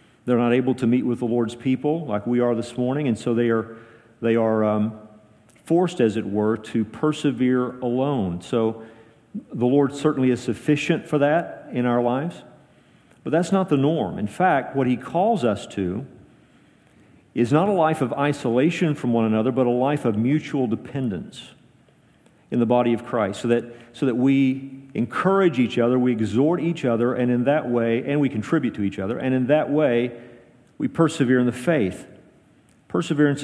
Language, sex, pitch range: English, male, 115-145 Hz